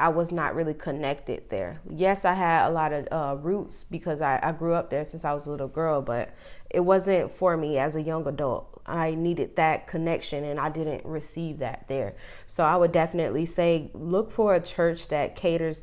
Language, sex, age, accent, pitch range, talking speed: English, female, 20-39, American, 155-190 Hz, 210 wpm